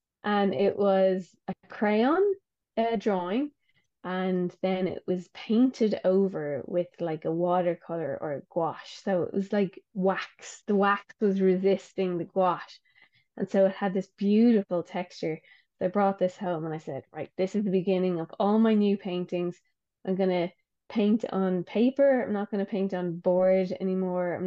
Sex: female